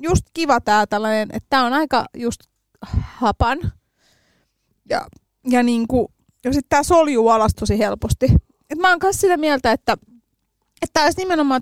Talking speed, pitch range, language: 150 wpm, 220-290 Hz, Finnish